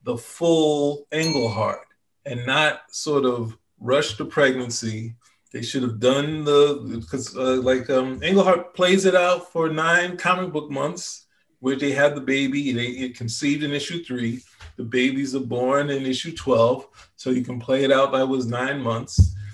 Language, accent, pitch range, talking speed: English, American, 125-155 Hz, 170 wpm